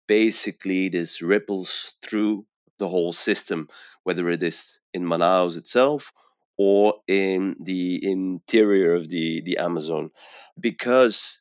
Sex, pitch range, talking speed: male, 85-105 Hz, 115 wpm